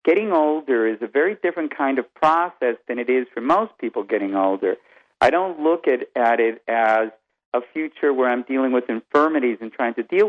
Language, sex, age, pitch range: English, male, 50-69, 115-145 Hz